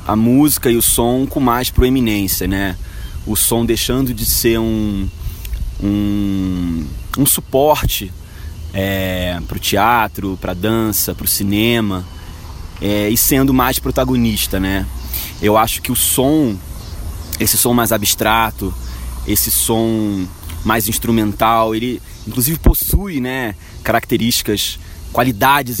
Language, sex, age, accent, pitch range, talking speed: Portuguese, male, 20-39, Brazilian, 95-125 Hz, 125 wpm